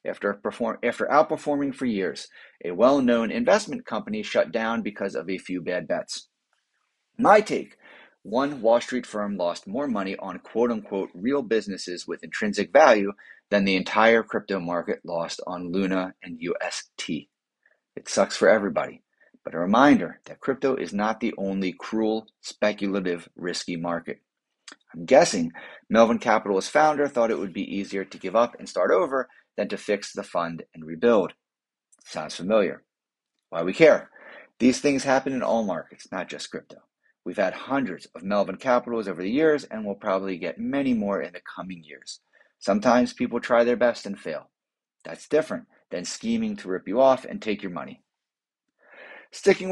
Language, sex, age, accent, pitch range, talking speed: English, male, 30-49, American, 95-130 Hz, 165 wpm